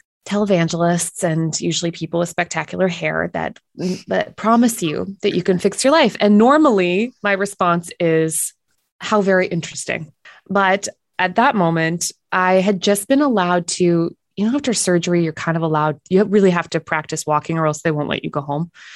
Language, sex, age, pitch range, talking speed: English, female, 20-39, 165-195 Hz, 180 wpm